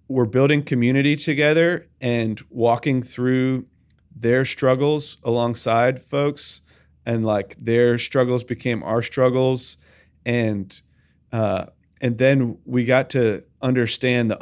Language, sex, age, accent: English, male, 20-39, American